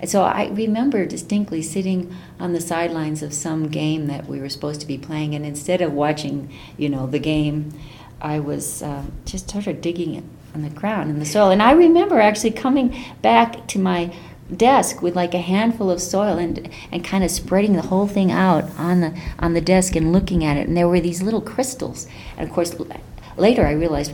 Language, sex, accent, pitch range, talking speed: English, female, American, 145-195 Hz, 215 wpm